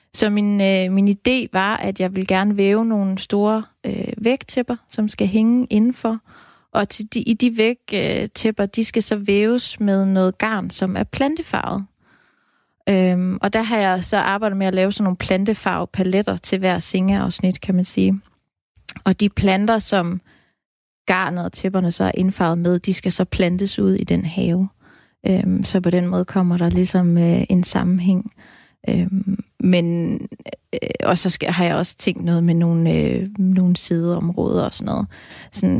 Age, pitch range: 20-39, 180-210 Hz